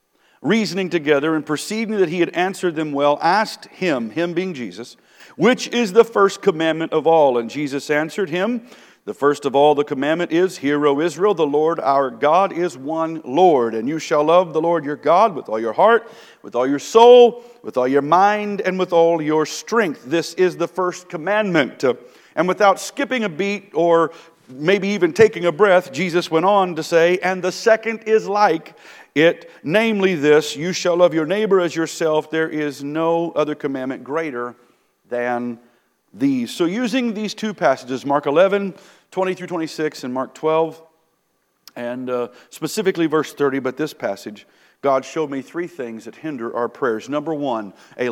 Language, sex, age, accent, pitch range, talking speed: English, male, 50-69, American, 140-195 Hz, 180 wpm